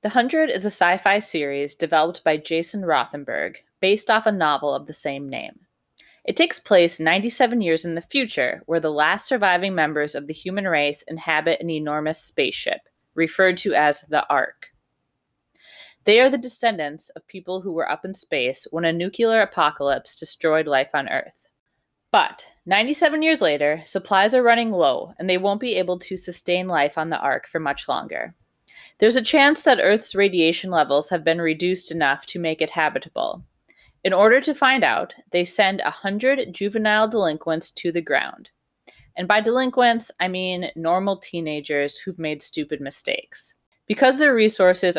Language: English